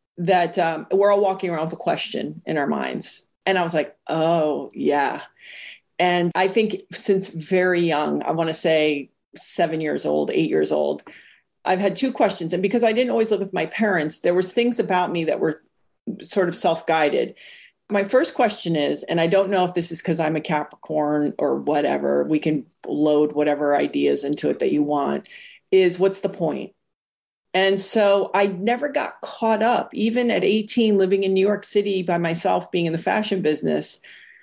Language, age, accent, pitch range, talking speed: English, 40-59, American, 170-225 Hz, 190 wpm